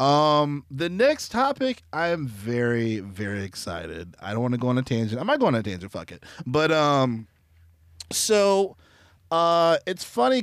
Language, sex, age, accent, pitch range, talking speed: English, male, 30-49, American, 110-150 Hz, 180 wpm